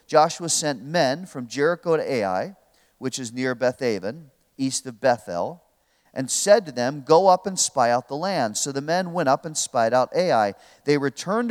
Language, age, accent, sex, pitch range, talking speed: English, 40-59, American, male, 120-160 Hz, 195 wpm